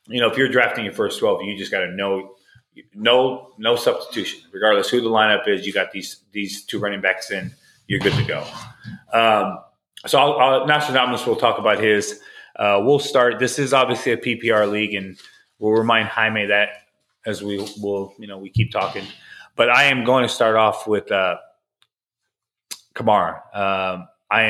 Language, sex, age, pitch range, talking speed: English, male, 20-39, 100-135 Hz, 190 wpm